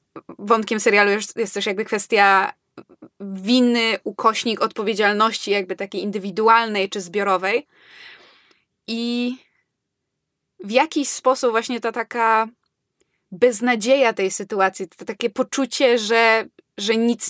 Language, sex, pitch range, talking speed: Polish, female, 205-245 Hz, 105 wpm